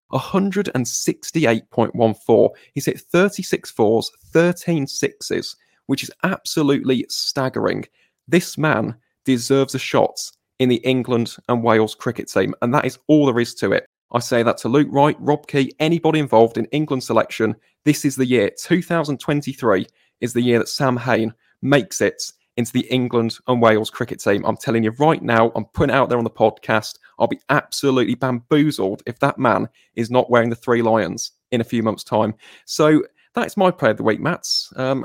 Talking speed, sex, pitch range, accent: 180 wpm, male, 115-145 Hz, British